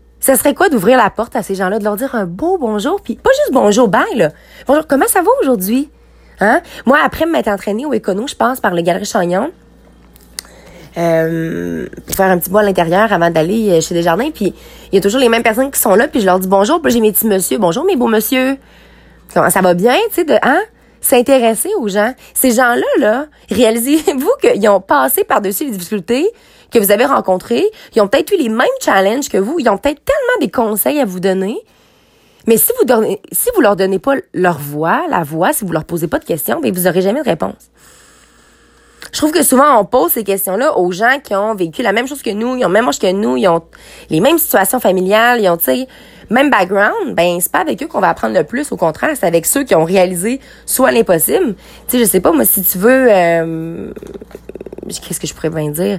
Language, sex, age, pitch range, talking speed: French, female, 20-39, 185-260 Hz, 235 wpm